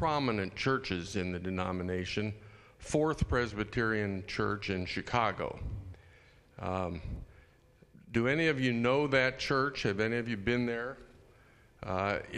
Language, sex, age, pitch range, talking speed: English, male, 50-69, 105-125 Hz, 120 wpm